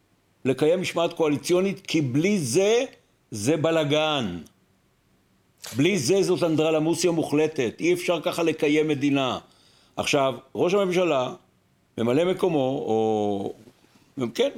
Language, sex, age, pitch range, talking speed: Hebrew, male, 60-79, 140-185 Hz, 105 wpm